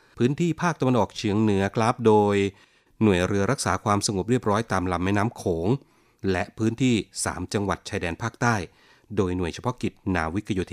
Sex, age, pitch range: male, 30-49, 90-115 Hz